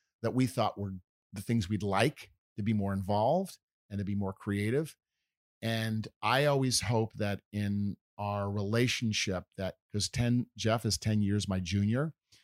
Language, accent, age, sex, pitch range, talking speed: English, American, 50-69, male, 100-115 Hz, 165 wpm